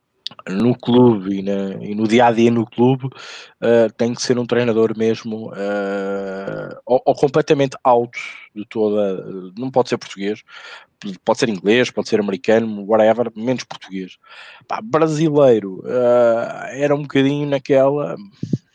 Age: 20-39